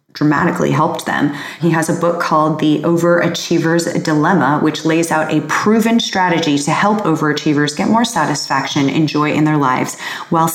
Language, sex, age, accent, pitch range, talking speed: English, female, 30-49, American, 150-180 Hz, 165 wpm